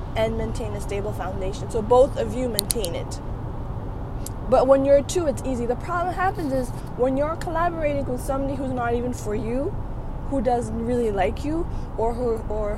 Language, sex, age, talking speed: English, female, 20-39, 185 wpm